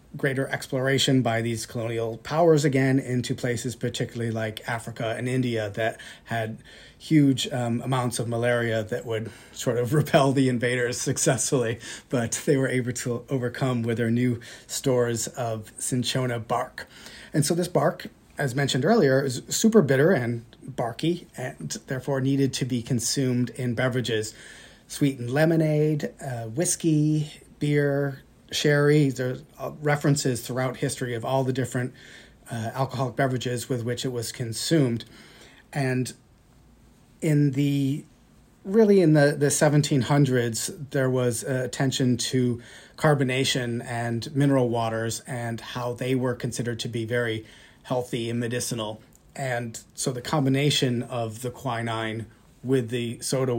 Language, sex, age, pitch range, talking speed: English, male, 30-49, 120-140 Hz, 135 wpm